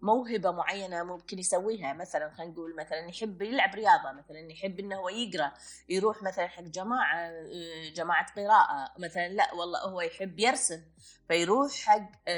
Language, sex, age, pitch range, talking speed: Arabic, female, 20-39, 175-235 Hz, 145 wpm